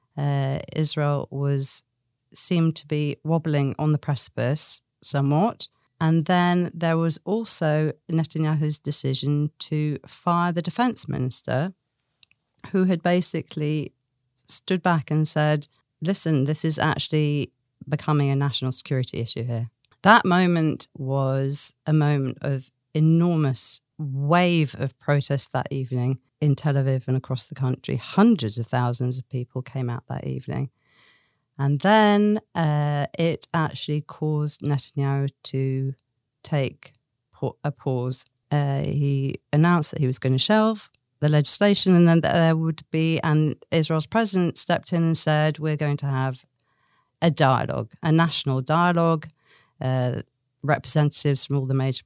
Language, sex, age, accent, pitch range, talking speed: English, female, 40-59, British, 135-160 Hz, 135 wpm